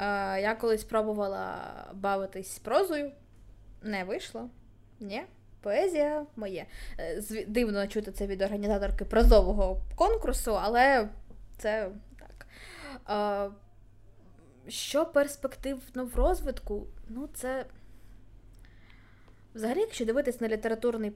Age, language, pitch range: 20-39, Ukrainian, 190-245 Hz